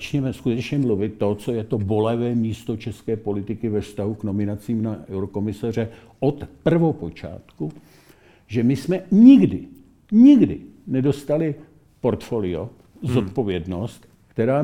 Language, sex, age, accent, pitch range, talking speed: Czech, male, 60-79, native, 105-140 Hz, 115 wpm